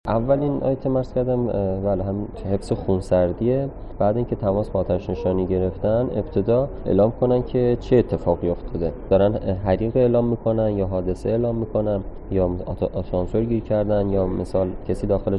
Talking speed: 150 wpm